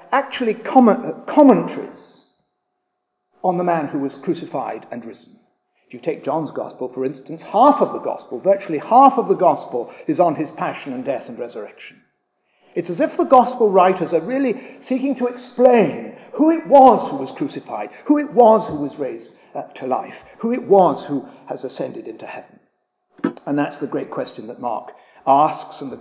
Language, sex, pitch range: English, male, 155-250 Hz